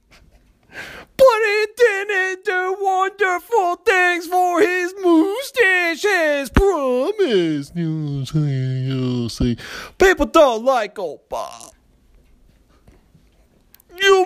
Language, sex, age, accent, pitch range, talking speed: English, male, 40-59, American, 240-400 Hz, 90 wpm